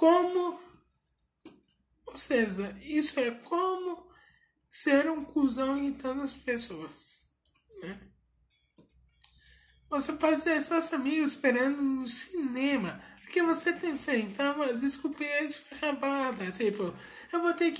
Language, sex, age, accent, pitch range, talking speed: Portuguese, male, 20-39, Brazilian, 255-325 Hz, 120 wpm